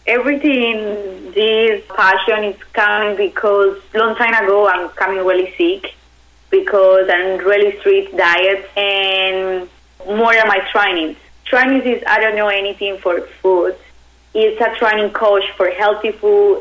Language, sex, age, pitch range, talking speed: English, female, 20-39, 190-230 Hz, 135 wpm